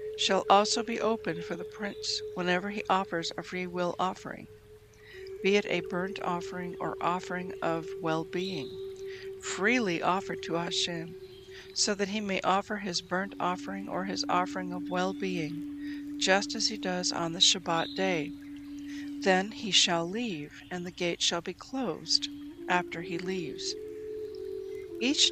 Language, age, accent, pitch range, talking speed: English, 60-79, American, 175-285 Hz, 145 wpm